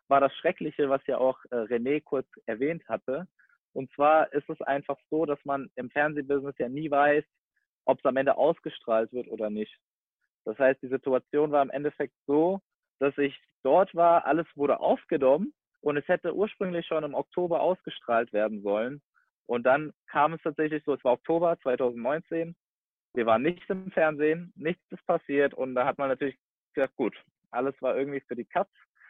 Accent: German